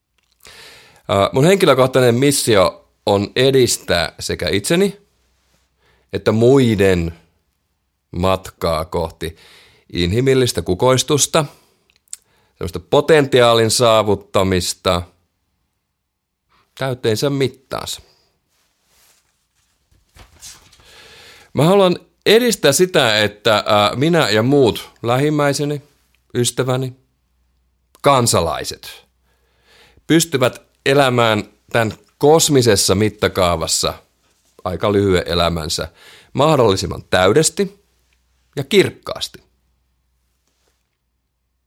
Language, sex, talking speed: Finnish, male, 60 wpm